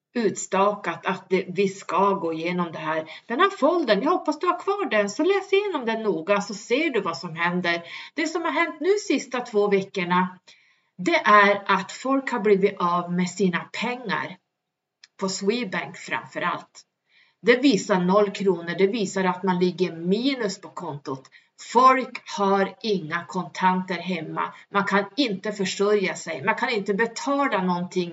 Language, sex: Swedish, female